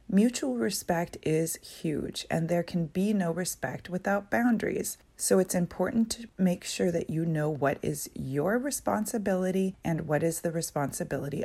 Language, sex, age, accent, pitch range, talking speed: English, female, 30-49, American, 160-210 Hz, 155 wpm